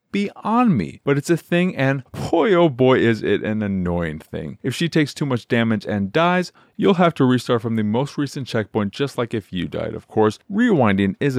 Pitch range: 110-160 Hz